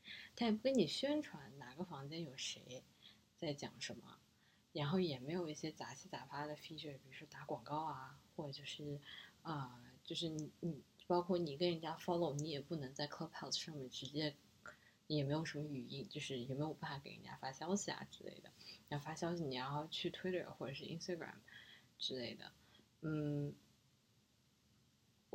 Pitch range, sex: 145-180 Hz, female